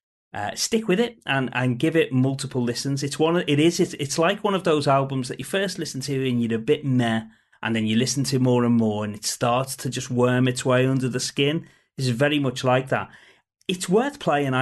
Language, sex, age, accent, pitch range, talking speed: English, male, 30-49, British, 115-140 Hz, 240 wpm